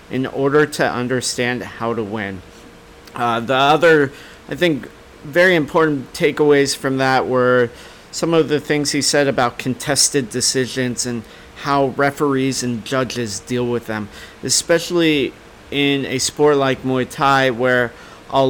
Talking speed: 145 wpm